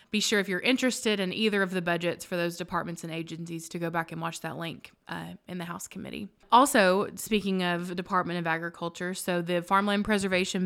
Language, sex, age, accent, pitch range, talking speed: English, female, 20-39, American, 175-200 Hz, 210 wpm